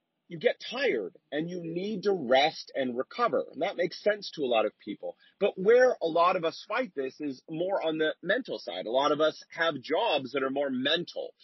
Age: 40-59